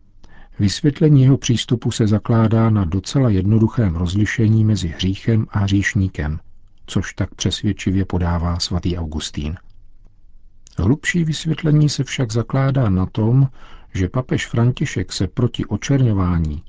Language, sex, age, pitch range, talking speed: Czech, male, 50-69, 90-115 Hz, 115 wpm